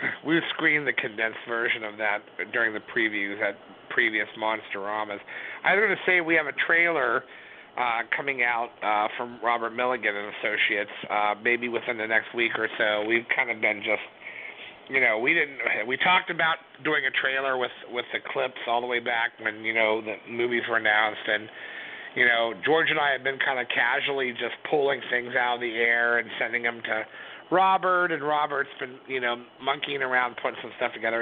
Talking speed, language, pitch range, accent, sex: 200 wpm, English, 110-135 Hz, American, male